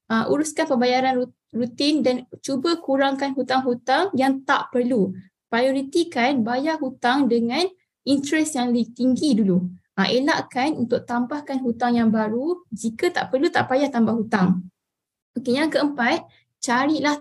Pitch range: 235-275 Hz